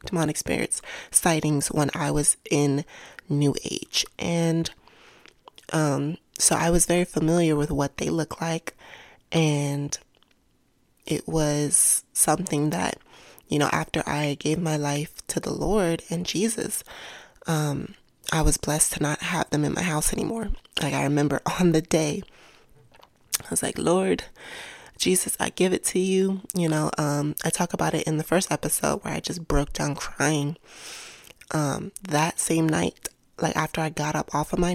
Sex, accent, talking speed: female, American, 165 wpm